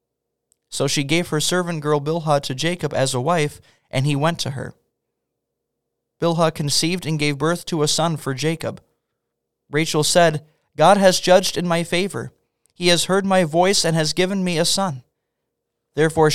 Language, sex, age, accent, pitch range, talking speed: English, male, 20-39, American, 145-170 Hz, 175 wpm